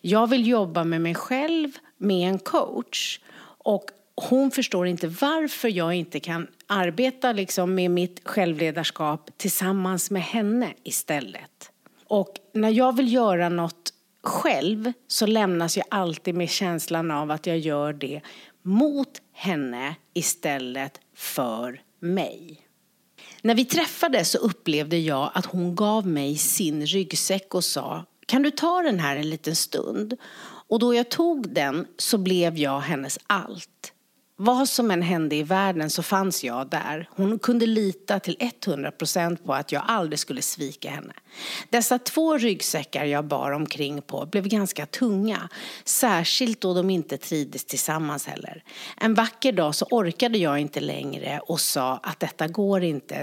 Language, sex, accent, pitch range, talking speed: English, female, Swedish, 155-220 Hz, 150 wpm